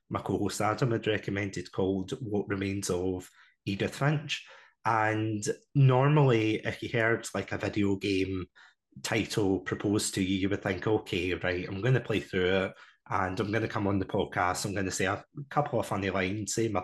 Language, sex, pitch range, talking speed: English, male, 100-120 Hz, 190 wpm